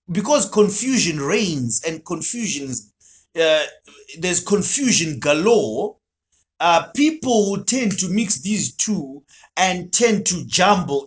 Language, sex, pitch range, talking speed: English, male, 145-220 Hz, 110 wpm